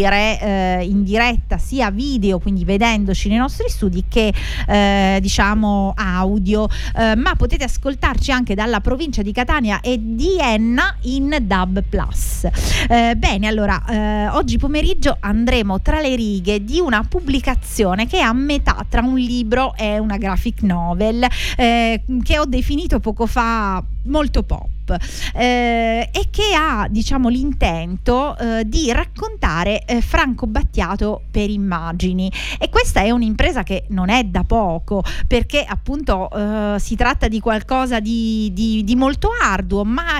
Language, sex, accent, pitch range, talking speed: Italian, female, native, 205-265 Hz, 140 wpm